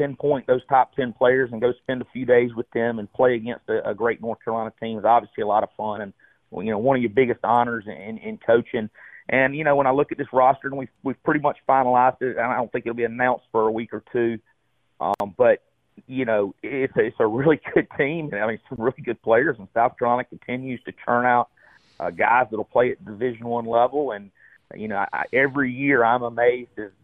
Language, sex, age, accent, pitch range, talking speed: English, male, 40-59, American, 110-130 Hz, 240 wpm